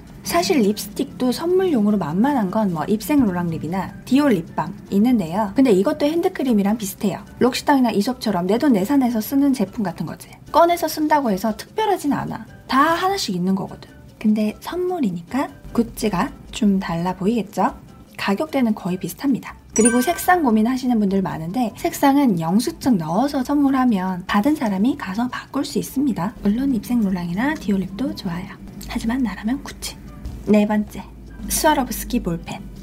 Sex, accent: female, native